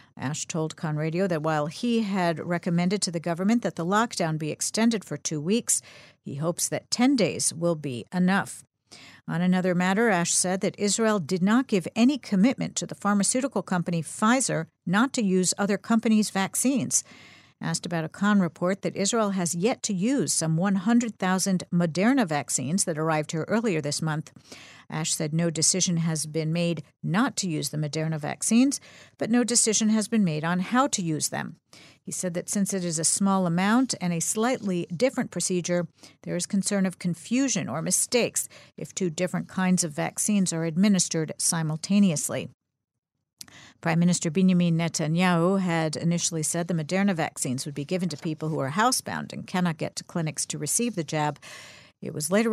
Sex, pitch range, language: female, 160-205 Hz, English